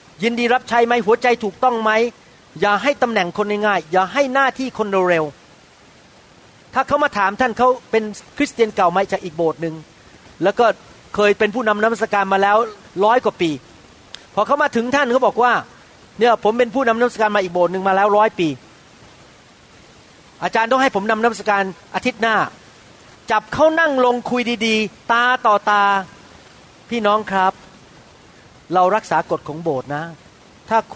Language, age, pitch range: Thai, 30-49, 180-230 Hz